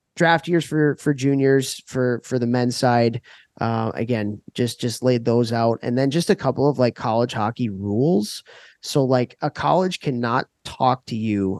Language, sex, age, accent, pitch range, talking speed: English, male, 20-39, American, 105-125 Hz, 180 wpm